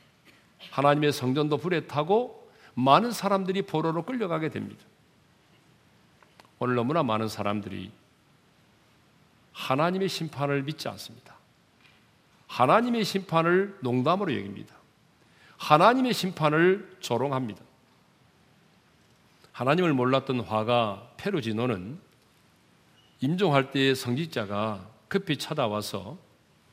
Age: 40-59